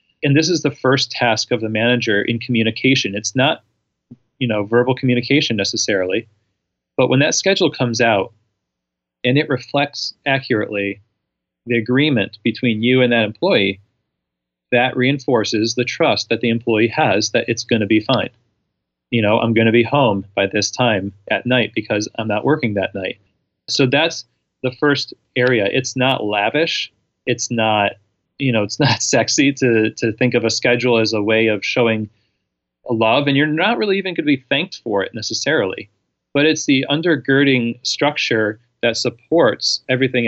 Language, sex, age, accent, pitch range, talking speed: English, male, 30-49, American, 110-130 Hz, 170 wpm